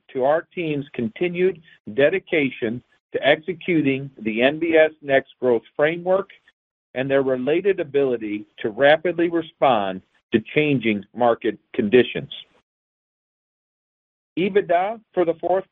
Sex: male